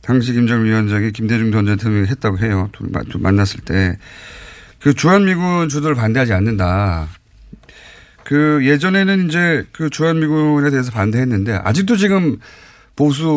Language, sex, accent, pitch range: Korean, male, native, 110-165 Hz